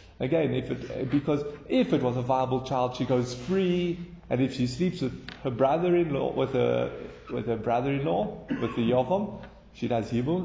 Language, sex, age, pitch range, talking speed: English, male, 30-49, 120-160 Hz, 180 wpm